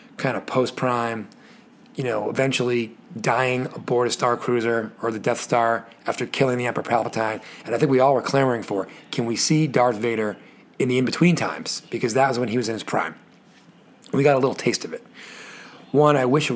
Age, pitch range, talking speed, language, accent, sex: 30-49, 120-145 Hz, 205 wpm, English, American, male